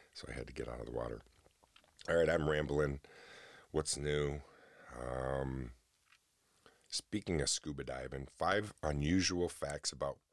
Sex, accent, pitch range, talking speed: male, American, 70-90 Hz, 140 wpm